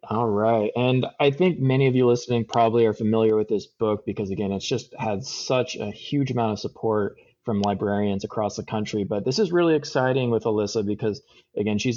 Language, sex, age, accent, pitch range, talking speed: English, male, 20-39, American, 105-130 Hz, 205 wpm